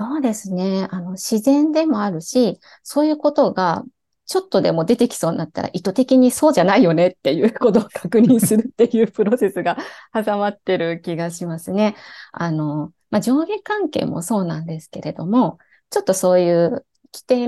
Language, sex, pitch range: Japanese, female, 180-265 Hz